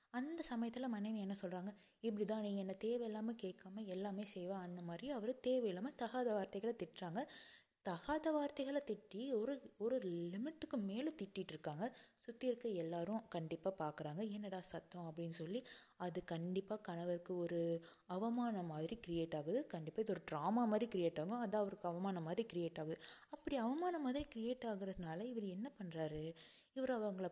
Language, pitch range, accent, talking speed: Tamil, 175-240 Hz, native, 150 wpm